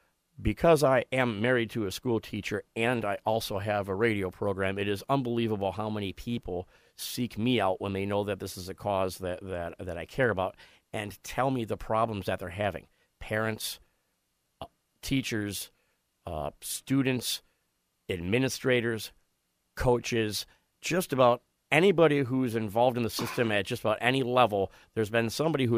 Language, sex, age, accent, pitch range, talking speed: English, male, 40-59, American, 95-120 Hz, 165 wpm